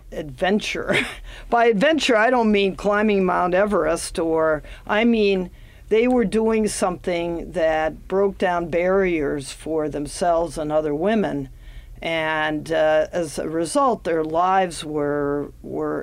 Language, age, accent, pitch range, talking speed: English, 50-69, American, 165-225 Hz, 125 wpm